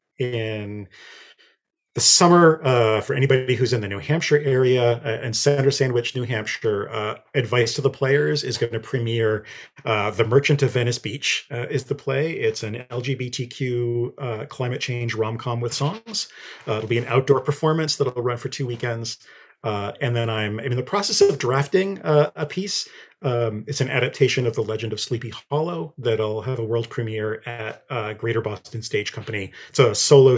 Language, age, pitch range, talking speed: English, 40-59, 110-140 Hz, 185 wpm